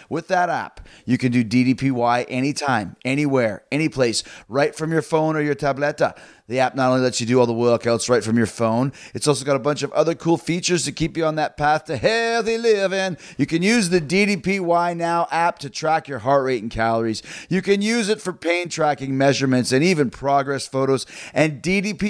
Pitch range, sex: 130-170 Hz, male